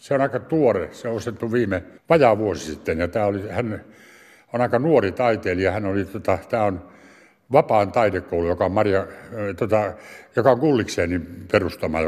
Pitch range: 95-125 Hz